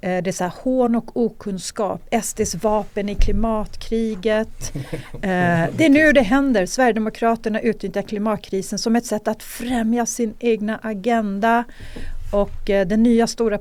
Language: English